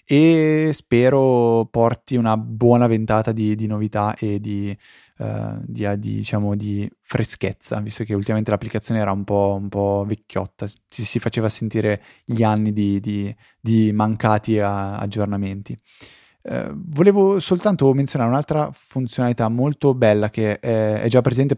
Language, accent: Italian, native